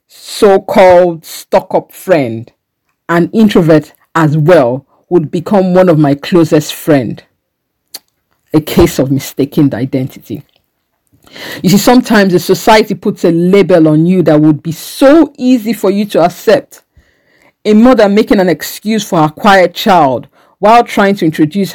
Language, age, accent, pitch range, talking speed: English, 50-69, Nigerian, 155-205 Hz, 145 wpm